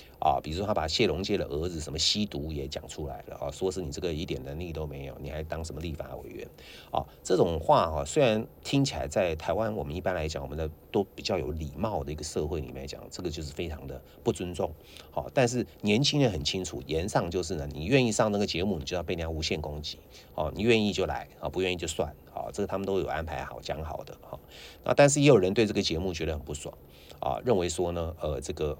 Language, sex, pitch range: English, male, 75-95 Hz